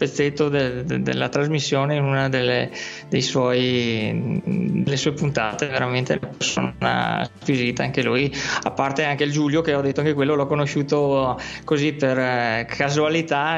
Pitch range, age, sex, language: 140-165 Hz, 20-39, male, Italian